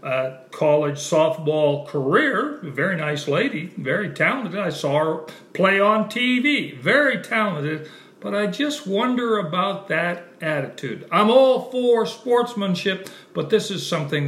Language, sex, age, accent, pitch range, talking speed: English, male, 60-79, American, 165-215 Hz, 135 wpm